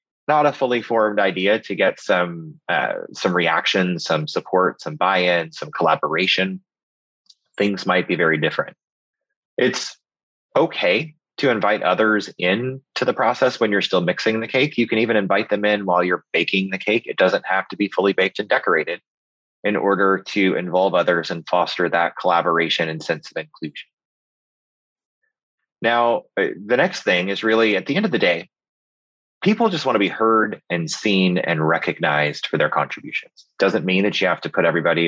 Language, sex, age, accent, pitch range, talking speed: English, male, 30-49, American, 85-110 Hz, 175 wpm